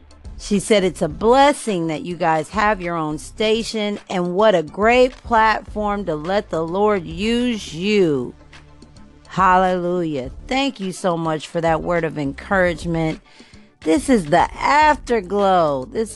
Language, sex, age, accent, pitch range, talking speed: English, female, 40-59, American, 175-245 Hz, 140 wpm